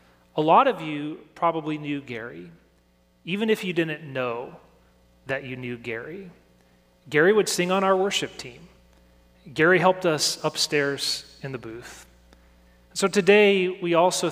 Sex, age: male, 30-49